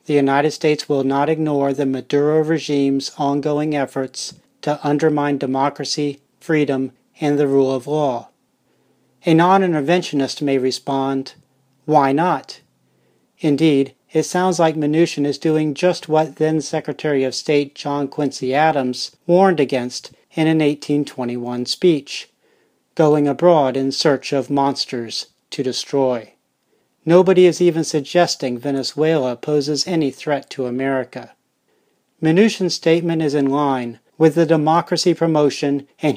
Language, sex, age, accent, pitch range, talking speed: English, male, 40-59, American, 135-155 Hz, 125 wpm